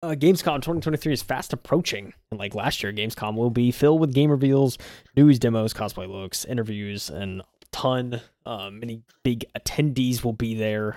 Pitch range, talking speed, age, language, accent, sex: 105-130 Hz, 175 wpm, 20-39, English, American, male